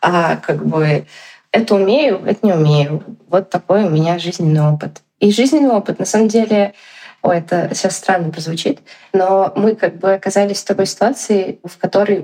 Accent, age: native, 20-39